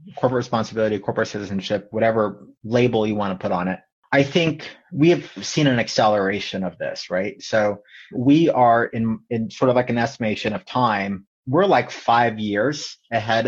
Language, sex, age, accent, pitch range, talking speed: English, male, 30-49, American, 110-130 Hz, 175 wpm